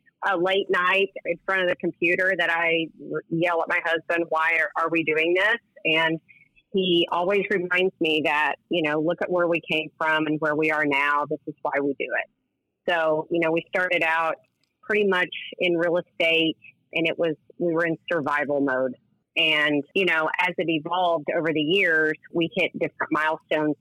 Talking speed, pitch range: 195 wpm, 160-180 Hz